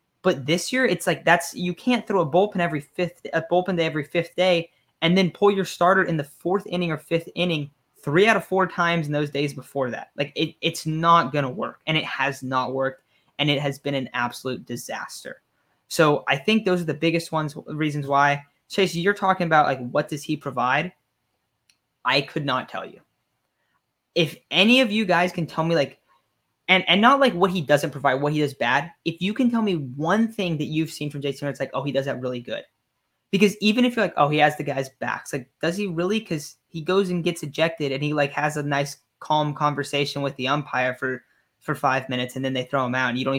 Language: English